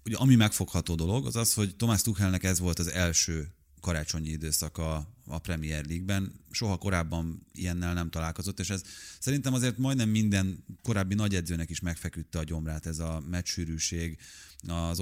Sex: male